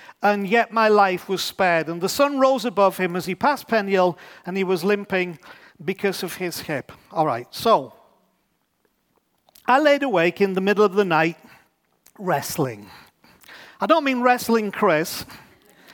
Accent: British